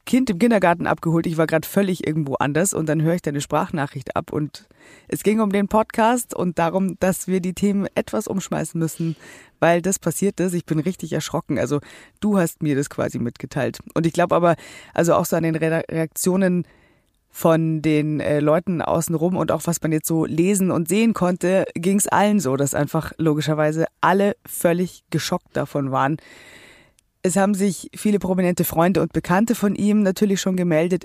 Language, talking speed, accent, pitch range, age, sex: German, 190 wpm, German, 155-190 Hz, 20-39, female